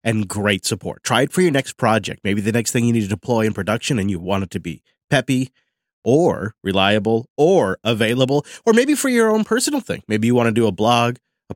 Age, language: 30-49, English